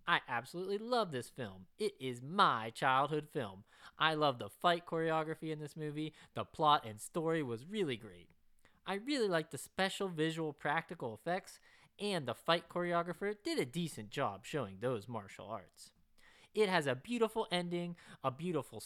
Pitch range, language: 135-205 Hz, English